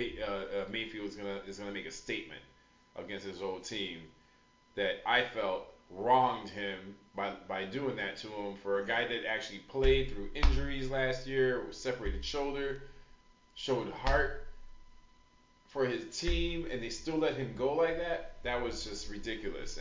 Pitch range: 105-140 Hz